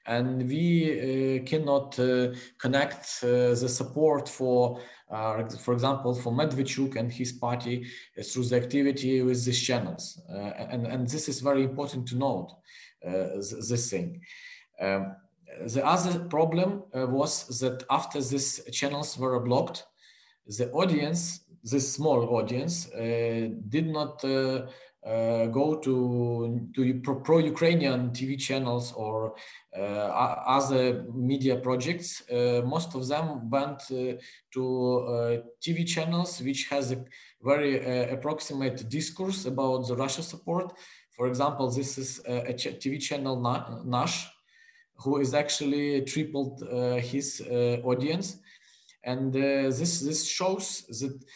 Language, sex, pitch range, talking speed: English, male, 125-145 Hz, 135 wpm